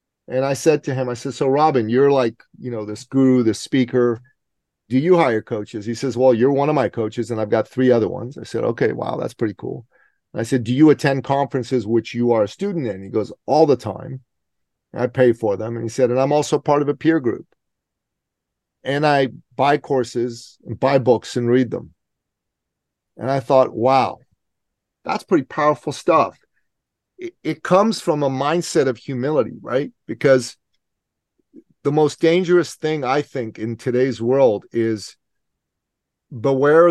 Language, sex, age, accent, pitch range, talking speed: English, male, 40-59, American, 120-150 Hz, 180 wpm